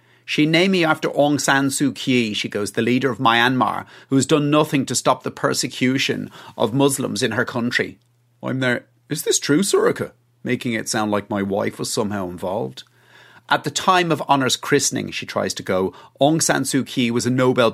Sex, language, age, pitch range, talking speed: male, English, 30-49, 115-145 Hz, 200 wpm